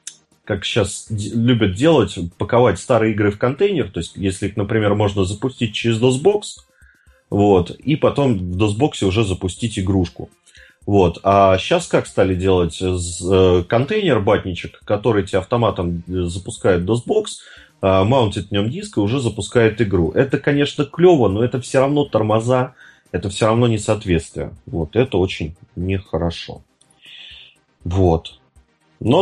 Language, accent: Russian, native